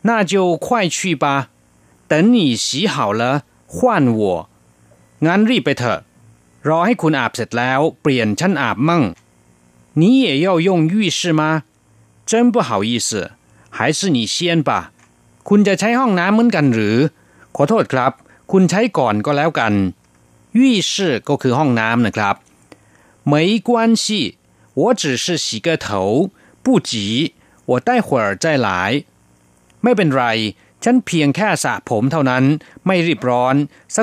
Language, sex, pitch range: Thai, male, 110-175 Hz